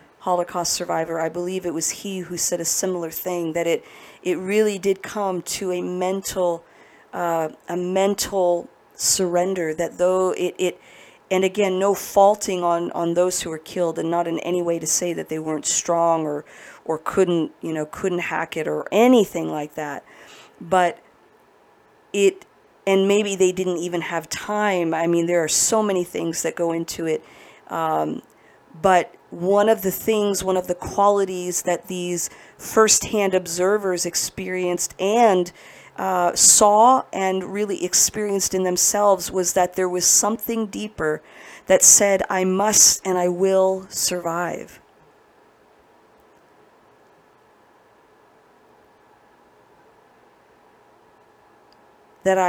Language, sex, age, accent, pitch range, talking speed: English, female, 40-59, American, 170-200 Hz, 135 wpm